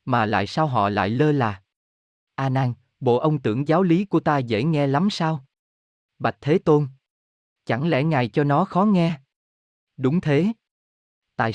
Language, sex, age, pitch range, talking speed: Vietnamese, male, 20-39, 110-160 Hz, 175 wpm